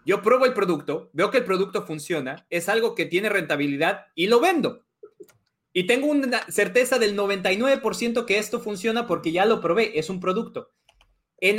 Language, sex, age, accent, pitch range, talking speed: English, male, 30-49, Mexican, 160-225 Hz, 175 wpm